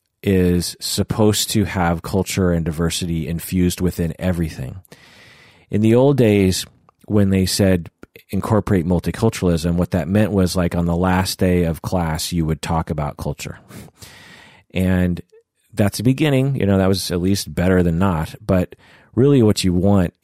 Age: 30-49